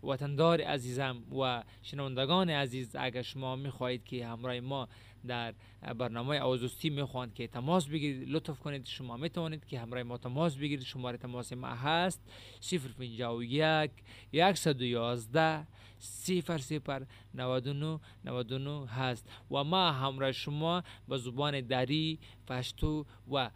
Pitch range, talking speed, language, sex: 125-155 Hz, 120 wpm, Urdu, male